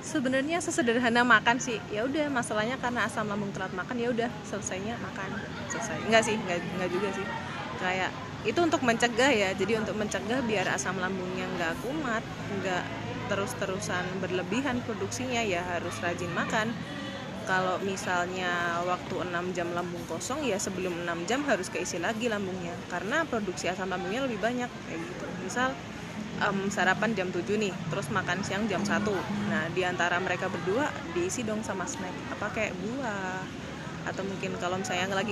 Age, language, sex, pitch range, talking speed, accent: 20-39, Indonesian, female, 180-220 Hz, 160 wpm, native